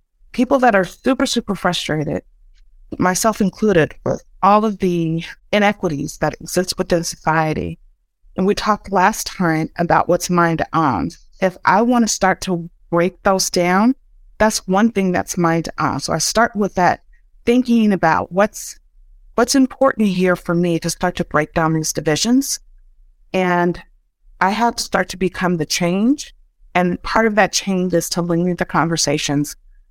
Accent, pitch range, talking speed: American, 170-215 Hz, 155 wpm